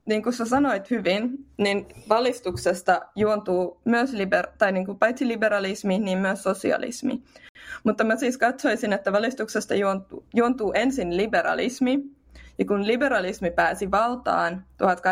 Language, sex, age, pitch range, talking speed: Finnish, female, 20-39, 190-240 Hz, 125 wpm